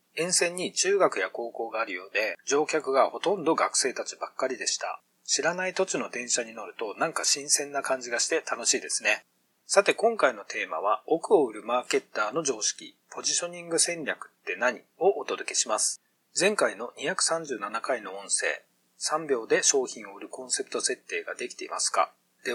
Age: 40-59